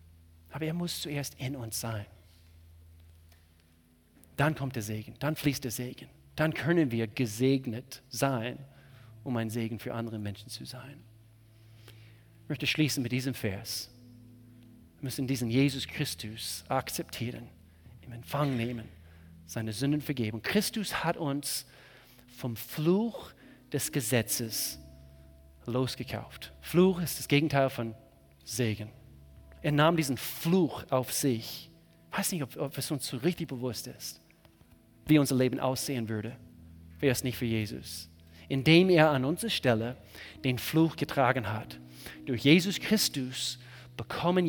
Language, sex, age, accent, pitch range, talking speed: German, male, 40-59, German, 110-140 Hz, 135 wpm